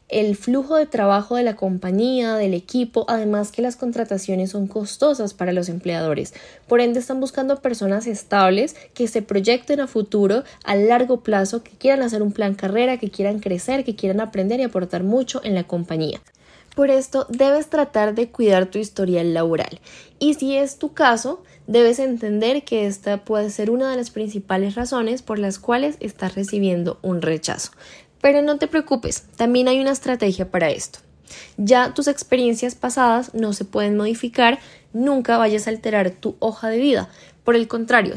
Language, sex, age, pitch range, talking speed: Spanish, female, 10-29, 205-260 Hz, 175 wpm